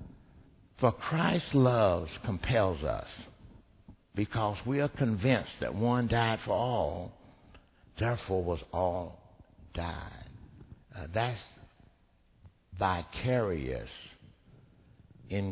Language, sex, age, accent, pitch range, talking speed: English, male, 60-79, American, 85-140 Hz, 85 wpm